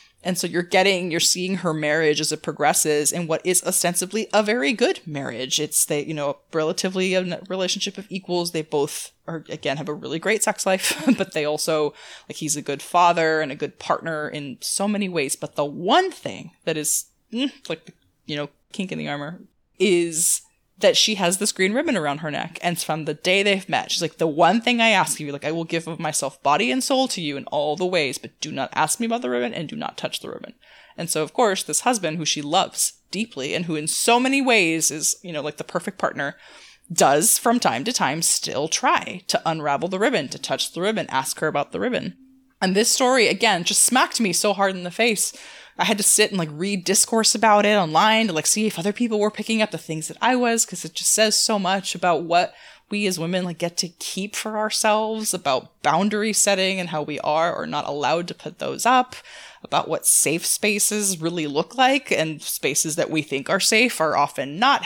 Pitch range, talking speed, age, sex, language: 155-215 Hz, 230 wpm, 20-39, female, English